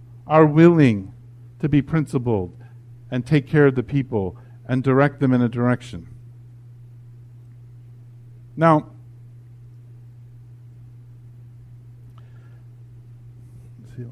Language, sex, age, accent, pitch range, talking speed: English, male, 50-69, American, 120-125 Hz, 80 wpm